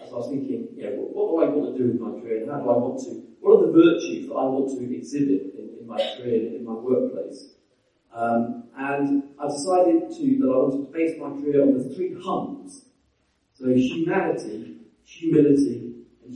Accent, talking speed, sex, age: British, 200 wpm, male, 40-59